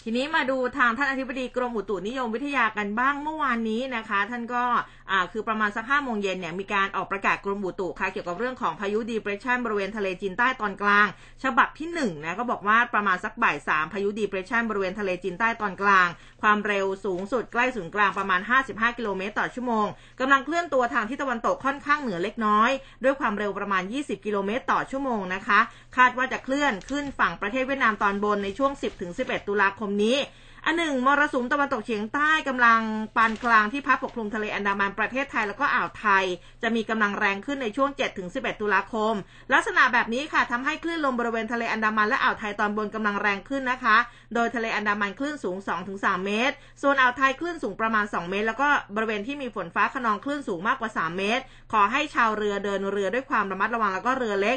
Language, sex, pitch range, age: Thai, female, 205-255 Hz, 20-39